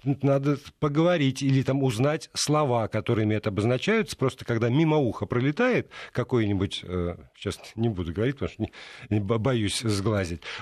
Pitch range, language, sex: 105-135 Hz, Russian, male